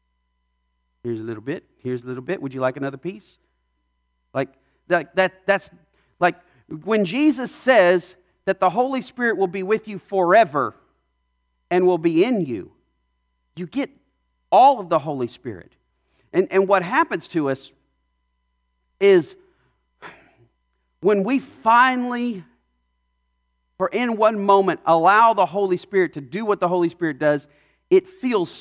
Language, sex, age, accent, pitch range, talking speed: English, male, 40-59, American, 120-195 Hz, 145 wpm